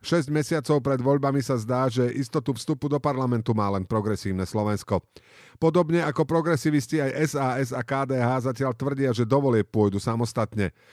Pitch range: 105-140 Hz